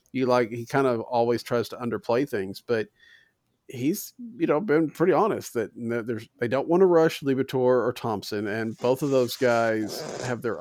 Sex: male